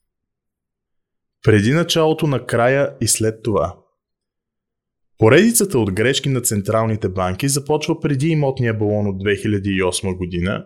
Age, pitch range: 20-39, 105-140 Hz